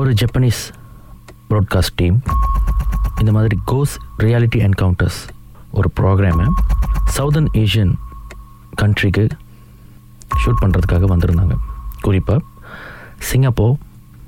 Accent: native